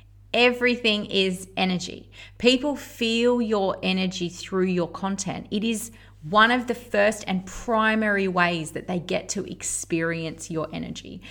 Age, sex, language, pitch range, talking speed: 30-49, female, English, 165-215 Hz, 140 wpm